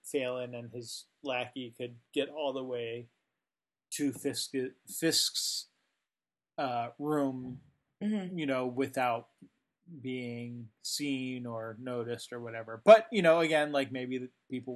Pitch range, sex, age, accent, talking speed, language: 120-155 Hz, male, 30-49, American, 125 wpm, English